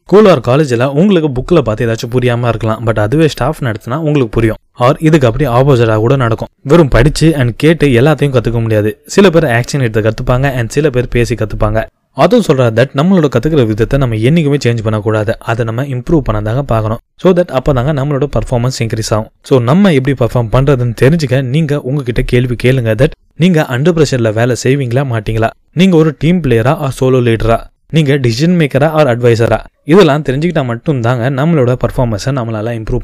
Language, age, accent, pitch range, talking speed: Tamil, 20-39, native, 115-150 Hz, 140 wpm